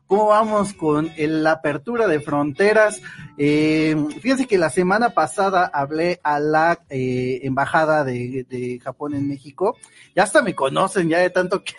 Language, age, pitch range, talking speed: Spanish, 40-59, 140-185 Hz, 165 wpm